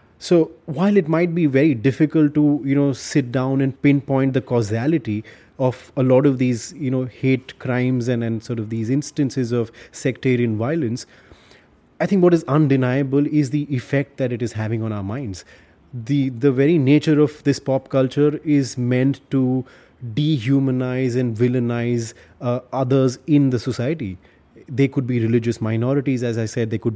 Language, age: English, 30-49